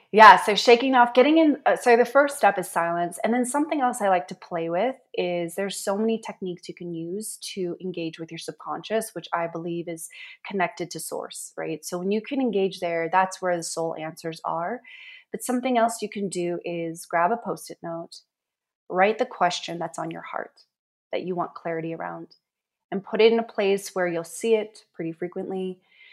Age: 20-39